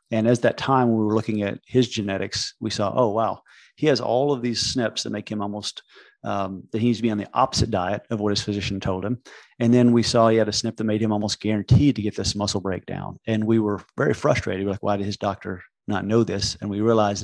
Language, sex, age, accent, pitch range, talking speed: English, male, 40-59, American, 100-115 Hz, 265 wpm